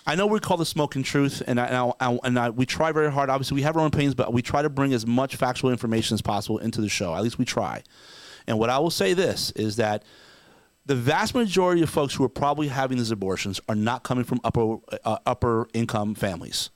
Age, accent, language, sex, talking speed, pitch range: 30-49, American, English, male, 245 wpm, 115-150 Hz